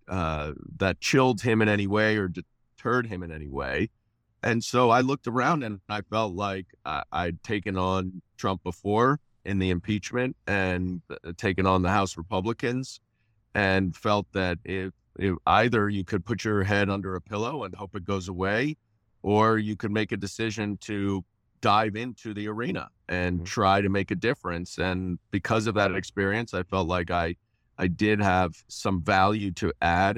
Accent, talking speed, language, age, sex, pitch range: American, 170 wpm, English, 40-59, male, 90-110 Hz